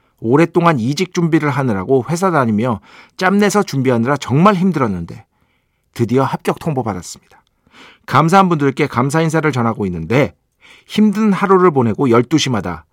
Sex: male